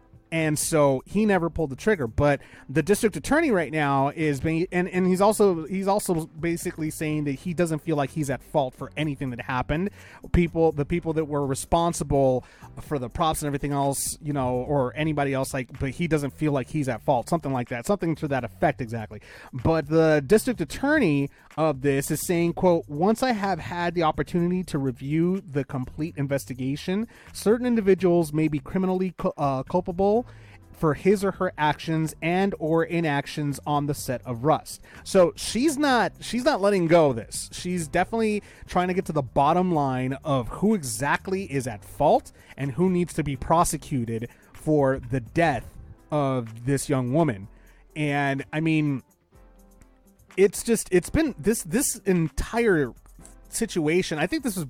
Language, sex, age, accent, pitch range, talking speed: English, male, 30-49, American, 135-180 Hz, 175 wpm